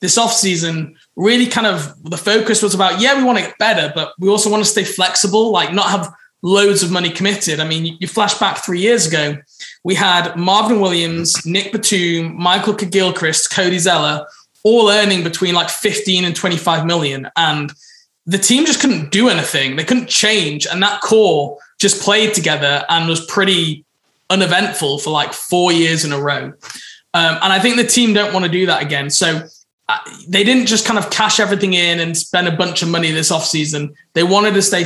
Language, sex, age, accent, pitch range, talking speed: English, male, 20-39, British, 165-200 Hz, 200 wpm